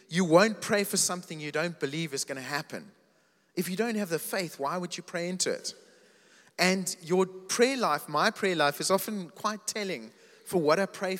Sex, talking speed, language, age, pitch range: male, 210 wpm, English, 30-49, 150-190 Hz